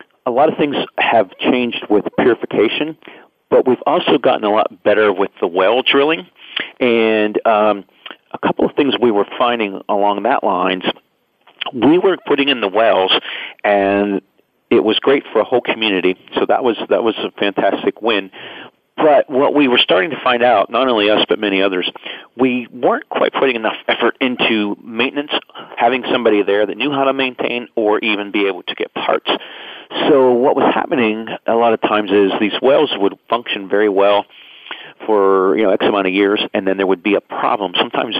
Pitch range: 100-125 Hz